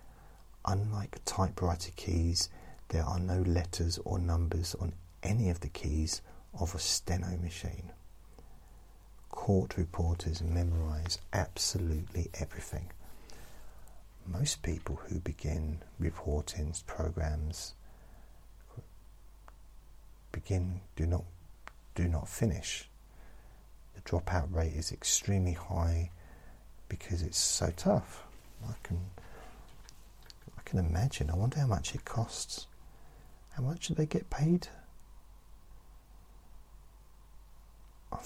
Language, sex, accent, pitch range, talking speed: English, male, British, 80-90 Hz, 95 wpm